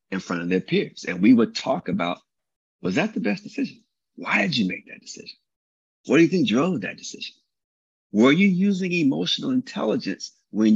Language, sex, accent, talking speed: English, male, American, 190 wpm